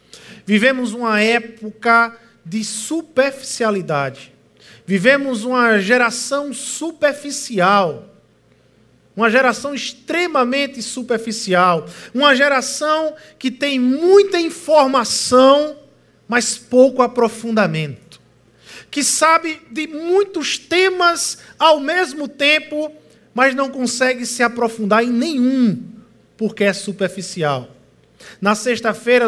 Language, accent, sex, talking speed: Portuguese, Brazilian, male, 85 wpm